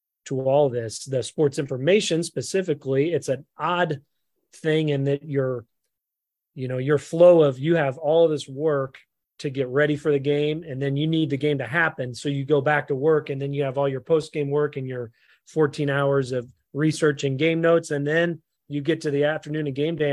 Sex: male